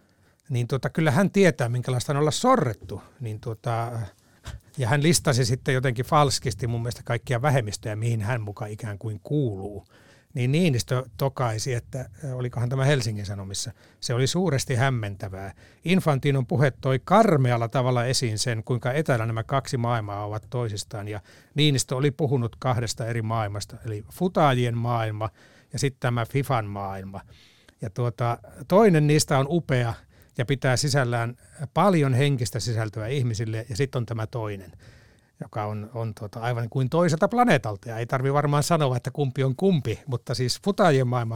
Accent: native